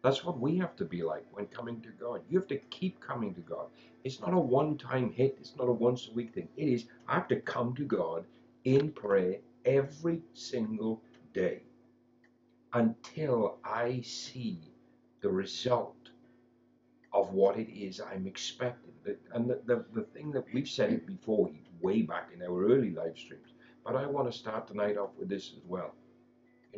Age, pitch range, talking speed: 60-79, 110-125 Hz, 180 wpm